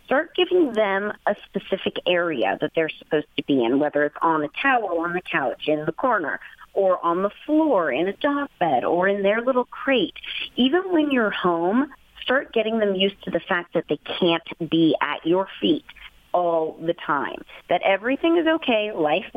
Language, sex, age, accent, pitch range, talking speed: English, female, 40-59, American, 175-240 Hz, 190 wpm